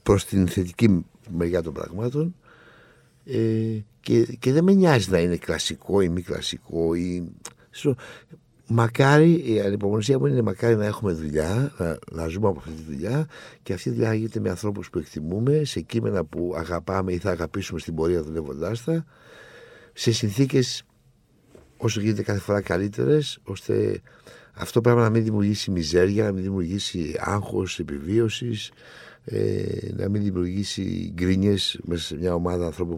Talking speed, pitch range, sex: 150 wpm, 85-115 Hz, male